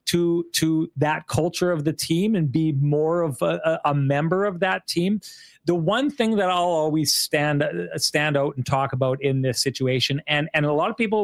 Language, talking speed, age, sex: English, 205 wpm, 30-49, male